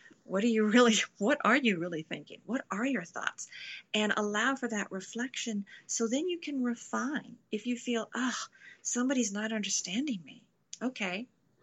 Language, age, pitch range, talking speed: English, 40-59, 195-240 Hz, 165 wpm